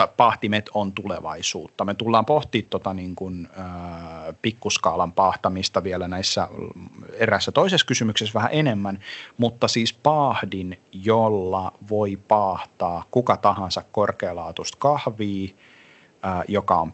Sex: male